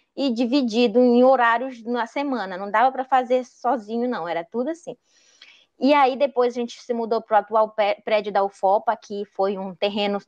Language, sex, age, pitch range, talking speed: Portuguese, female, 20-39, 215-265 Hz, 185 wpm